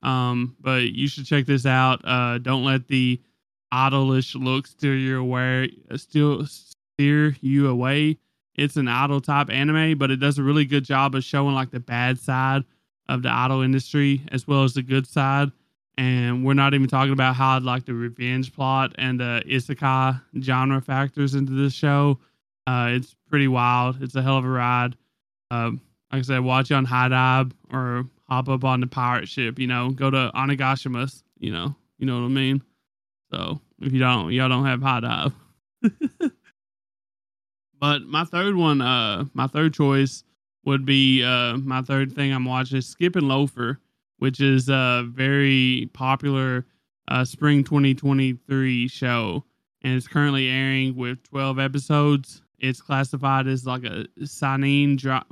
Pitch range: 125-140 Hz